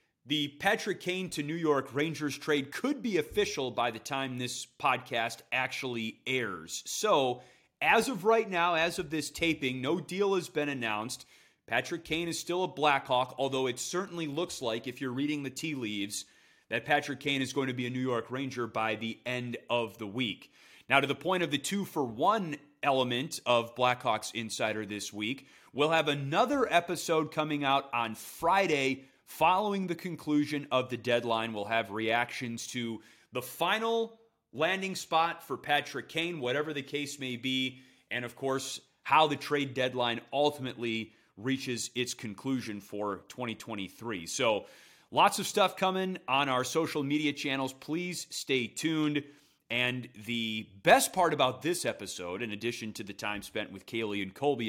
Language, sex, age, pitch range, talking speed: English, male, 30-49, 120-160 Hz, 165 wpm